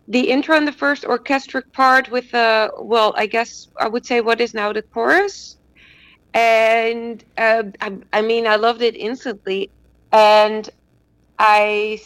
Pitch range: 185-235 Hz